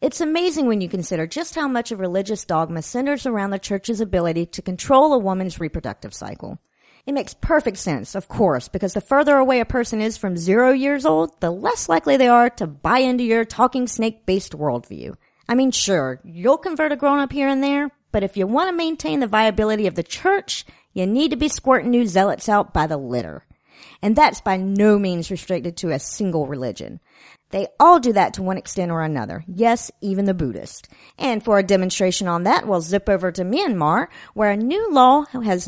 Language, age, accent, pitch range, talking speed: English, 50-69, American, 185-265 Hz, 205 wpm